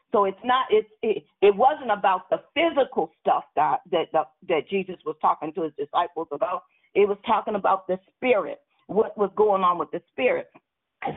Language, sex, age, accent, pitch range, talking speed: English, female, 50-69, American, 190-260 Hz, 195 wpm